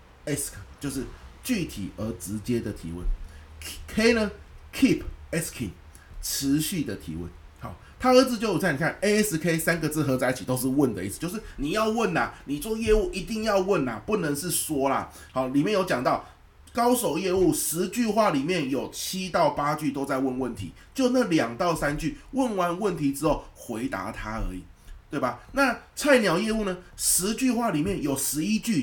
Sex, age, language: male, 30-49, Chinese